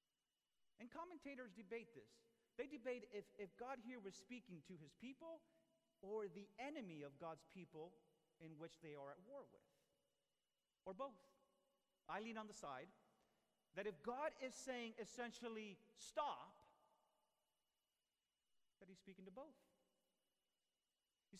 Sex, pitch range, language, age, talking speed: male, 175-250 Hz, English, 40-59, 135 wpm